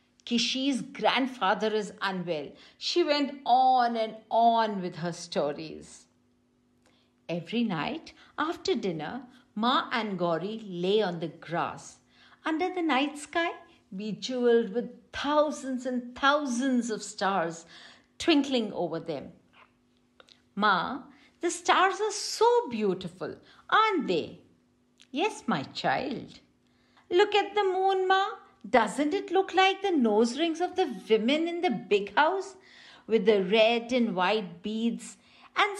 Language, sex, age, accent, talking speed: English, female, 50-69, Indian, 125 wpm